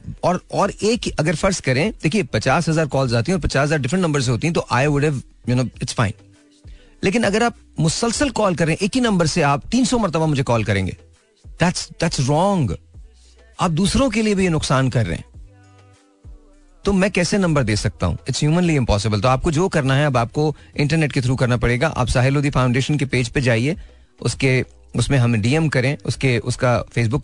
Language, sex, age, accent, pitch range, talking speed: Hindi, male, 40-59, native, 115-155 Hz, 145 wpm